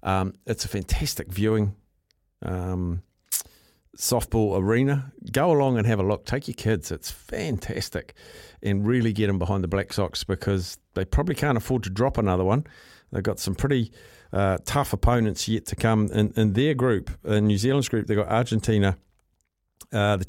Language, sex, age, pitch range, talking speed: English, male, 50-69, 95-110 Hz, 175 wpm